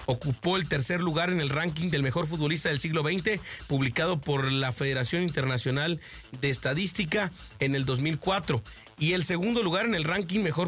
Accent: Mexican